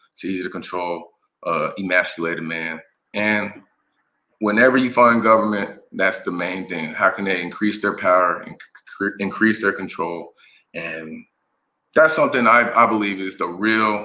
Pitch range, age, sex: 90-110 Hz, 30-49, male